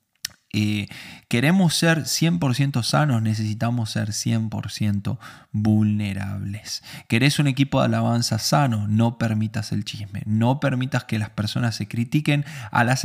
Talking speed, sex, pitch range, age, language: 130 wpm, male, 110-135 Hz, 20-39, Spanish